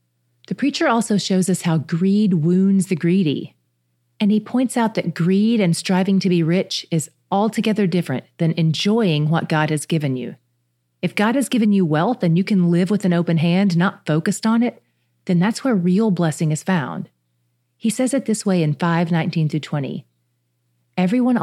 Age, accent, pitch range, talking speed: 40-59, American, 155-200 Hz, 185 wpm